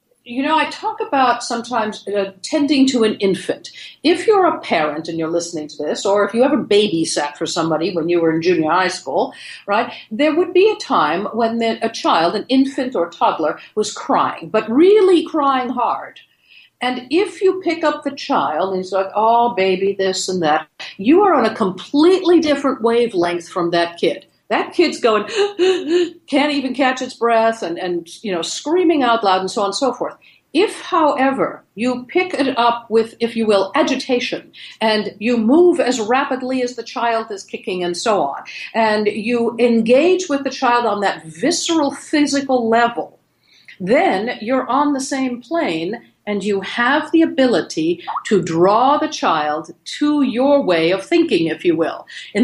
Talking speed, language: 180 wpm, English